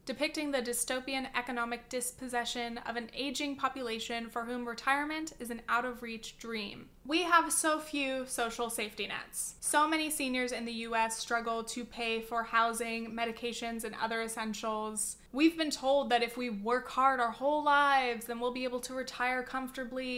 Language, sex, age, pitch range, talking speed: English, female, 20-39, 230-280 Hz, 170 wpm